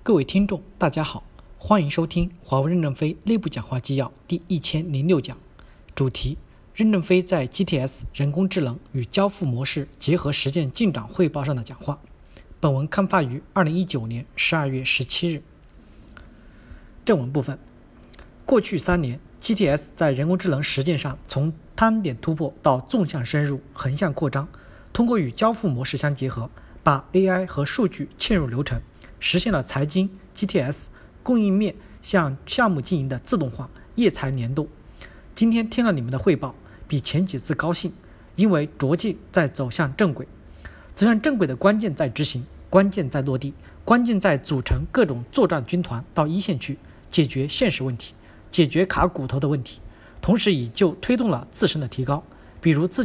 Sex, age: male, 40-59